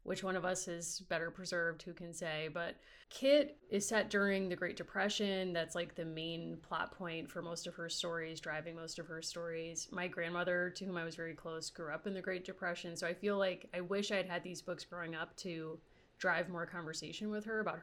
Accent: American